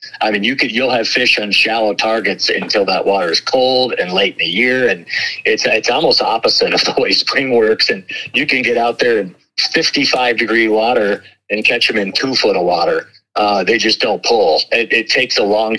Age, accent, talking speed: 50-69, American, 225 wpm